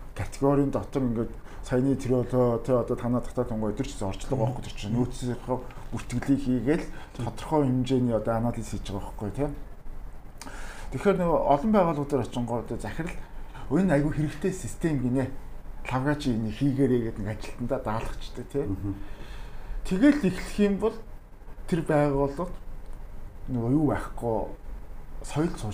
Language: English